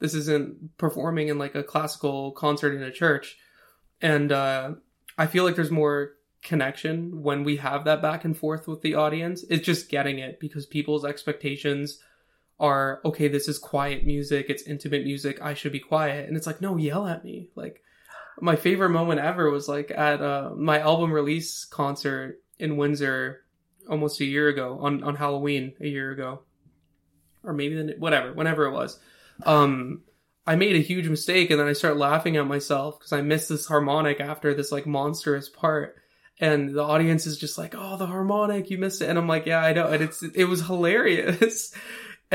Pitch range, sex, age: 145-165 Hz, male, 20-39